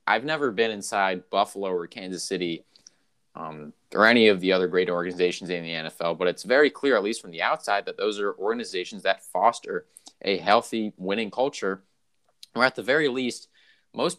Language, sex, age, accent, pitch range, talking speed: English, male, 20-39, American, 90-145 Hz, 185 wpm